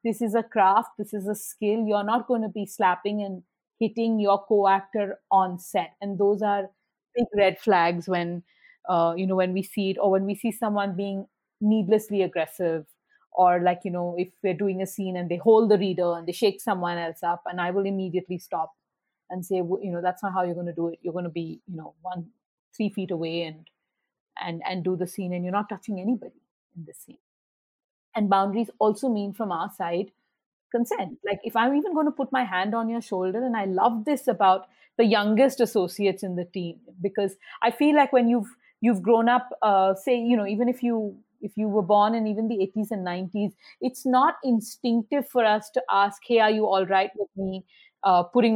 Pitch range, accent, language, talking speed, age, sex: 185-230 Hz, Indian, English, 215 wpm, 30-49, female